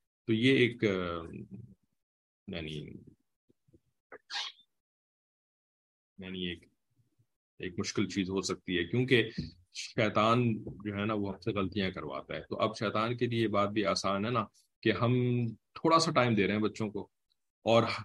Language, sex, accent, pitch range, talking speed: English, male, Indian, 100-130 Hz, 145 wpm